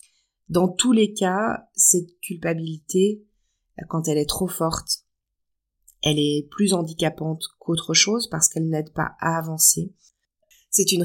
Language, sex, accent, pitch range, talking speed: French, female, French, 155-195 Hz, 135 wpm